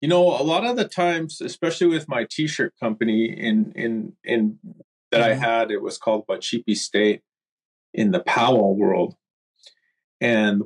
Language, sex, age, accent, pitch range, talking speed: English, male, 30-49, American, 105-155 Hz, 160 wpm